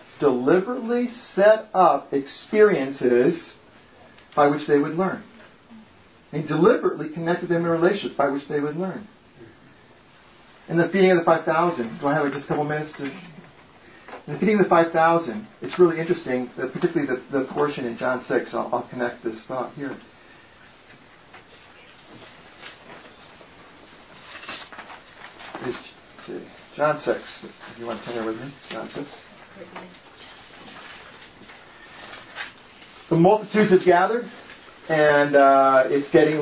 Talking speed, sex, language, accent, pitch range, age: 135 wpm, male, English, American, 140-180 Hz, 50-69